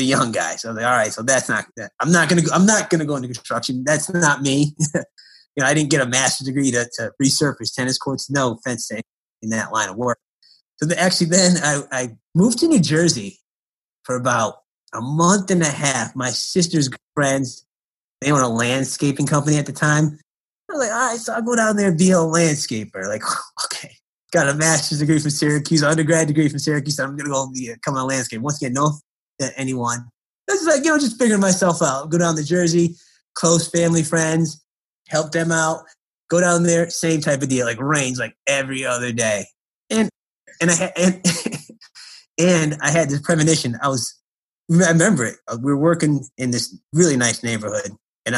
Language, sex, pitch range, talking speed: English, male, 125-170 Hz, 210 wpm